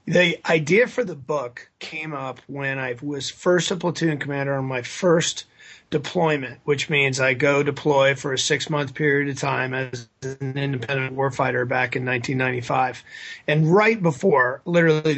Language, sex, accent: English, male, American